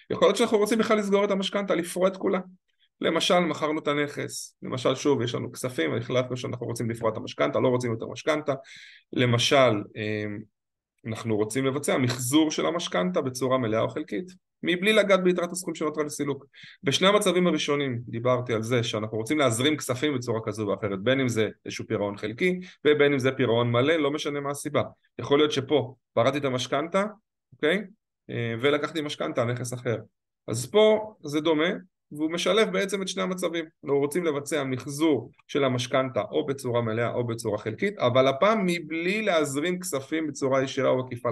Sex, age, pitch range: male, 20-39, 120-170 Hz